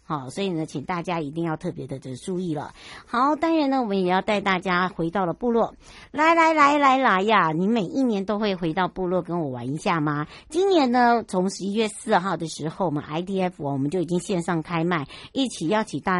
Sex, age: male, 60-79